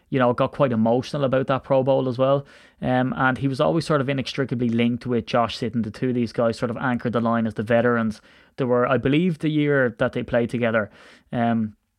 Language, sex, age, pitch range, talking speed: English, male, 20-39, 115-130 Hz, 235 wpm